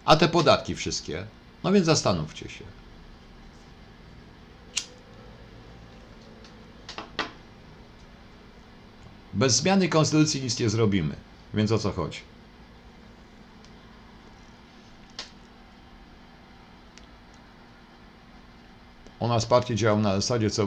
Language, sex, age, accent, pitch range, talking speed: Polish, male, 50-69, native, 100-150 Hz, 75 wpm